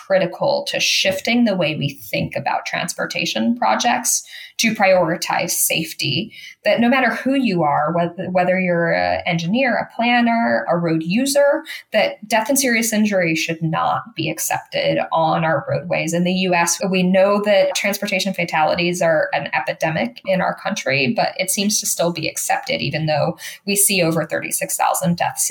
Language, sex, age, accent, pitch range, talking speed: English, female, 10-29, American, 170-220 Hz, 160 wpm